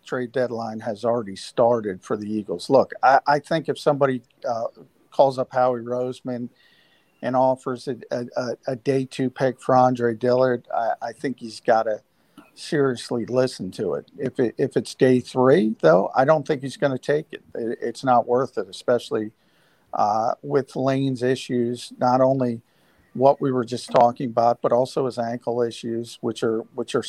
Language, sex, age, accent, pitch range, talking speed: English, male, 50-69, American, 120-135 Hz, 180 wpm